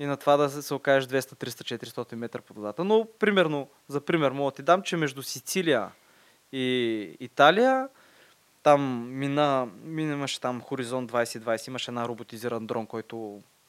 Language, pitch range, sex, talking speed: Bulgarian, 125-175 Hz, male, 160 wpm